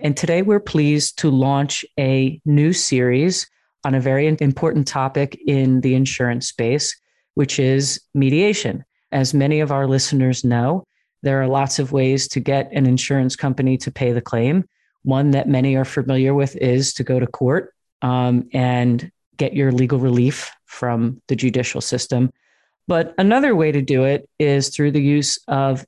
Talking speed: 170 wpm